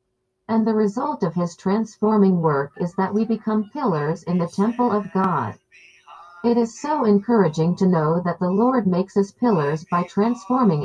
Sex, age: female, 50-69